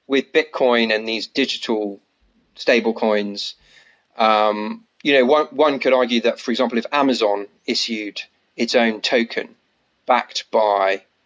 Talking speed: 135 wpm